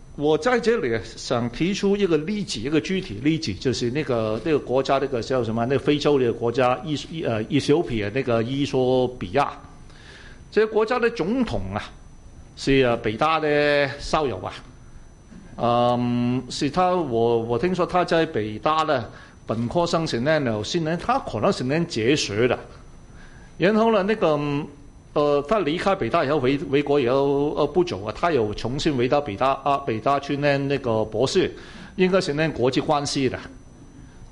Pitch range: 120-170 Hz